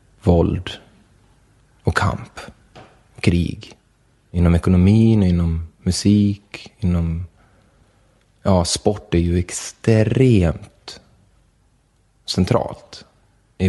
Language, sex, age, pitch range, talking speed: English, male, 30-49, 90-110 Hz, 70 wpm